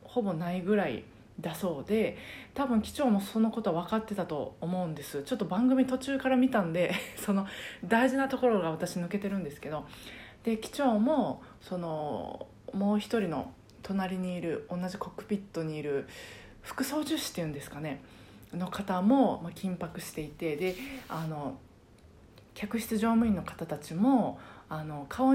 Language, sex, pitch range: Japanese, female, 170-235 Hz